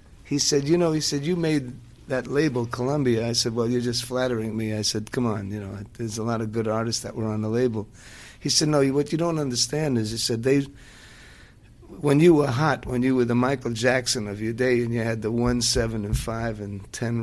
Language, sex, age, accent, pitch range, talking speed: English, male, 50-69, American, 110-130 Hz, 240 wpm